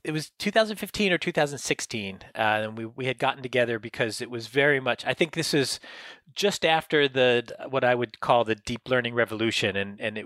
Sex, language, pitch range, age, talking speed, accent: male, English, 115-150 Hz, 30-49, 205 wpm, American